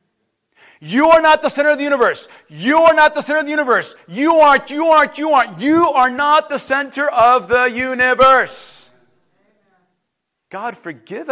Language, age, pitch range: English, 40-59, 185-280 Hz